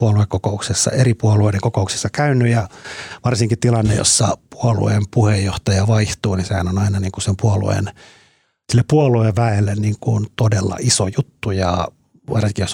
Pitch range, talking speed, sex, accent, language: 95-110 Hz, 135 wpm, male, native, Finnish